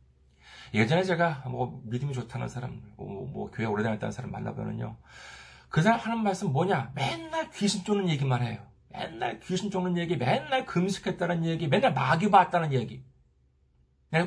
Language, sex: Korean, male